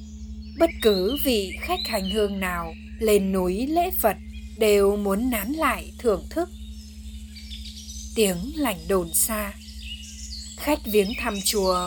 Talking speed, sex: 125 wpm, female